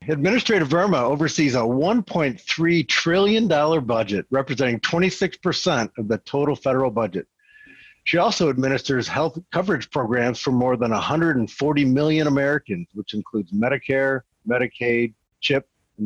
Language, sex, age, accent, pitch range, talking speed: English, male, 50-69, American, 115-160 Hz, 120 wpm